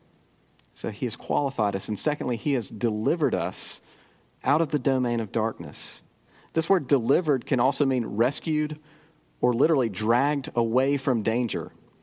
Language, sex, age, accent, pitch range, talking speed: English, male, 40-59, American, 125-150 Hz, 150 wpm